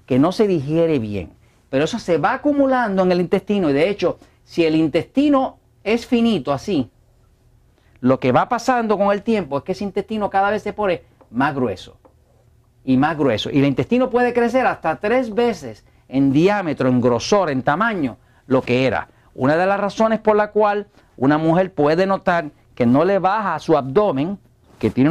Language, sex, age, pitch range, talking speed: Spanish, male, 50-69, 130-210 Hz, 185 wpm